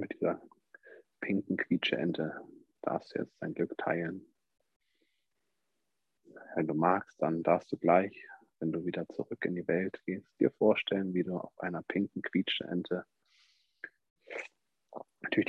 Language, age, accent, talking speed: German, 40-59, German, 130 wpm